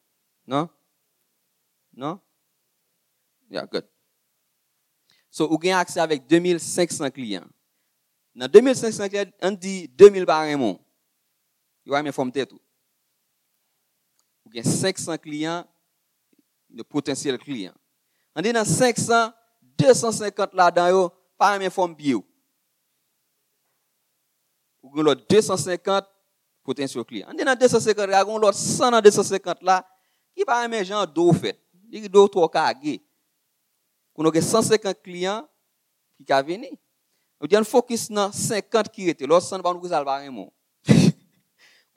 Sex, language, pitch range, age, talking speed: male, English, 160-220 Hz, 40-59, 105 wpm